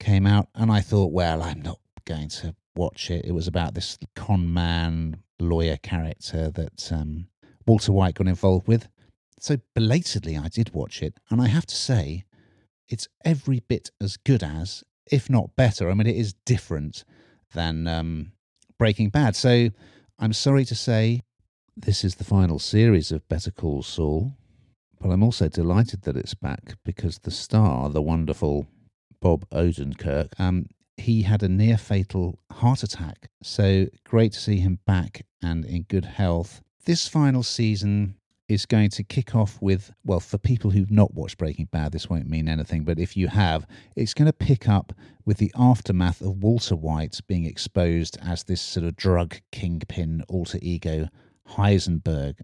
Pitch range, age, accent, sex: 85-110 Hz, 50-69, British, male